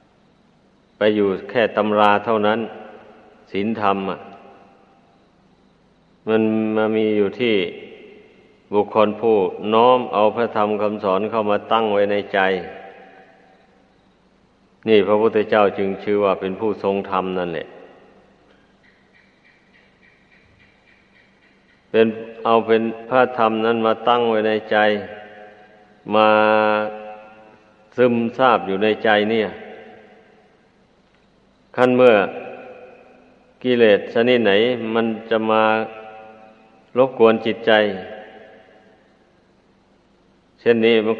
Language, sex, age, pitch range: Thai, male, 50-69, 105-115 Hz